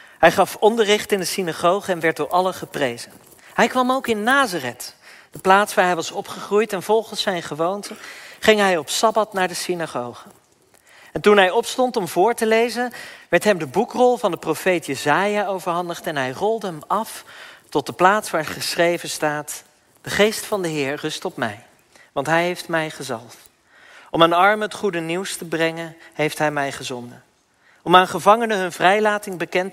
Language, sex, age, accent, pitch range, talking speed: Dutch, male, 40-59, Dutch, 150-200 Hz, 185 wpm